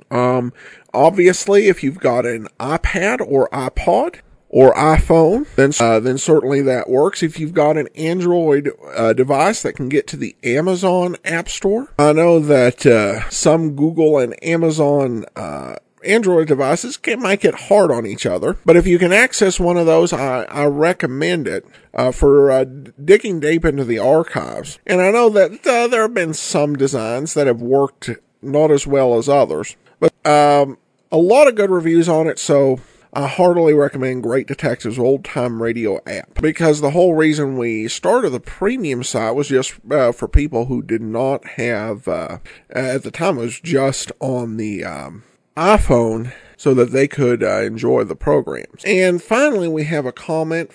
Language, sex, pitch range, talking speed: English, male, 130-170 Hz, 175 wpm